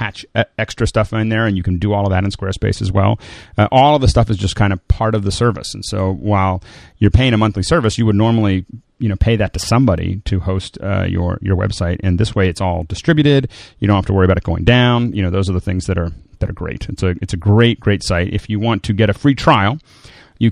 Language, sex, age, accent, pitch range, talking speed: English, male, 30-49, American, 95-115 Hz, 270 wpm